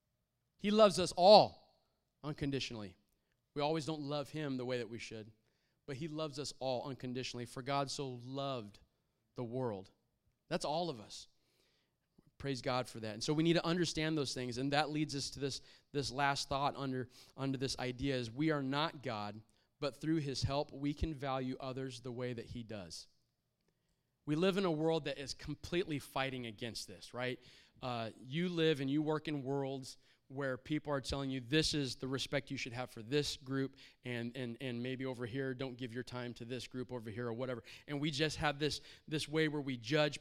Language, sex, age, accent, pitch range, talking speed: English, male, 30-49, American, 125-150 Hz, 205 wpm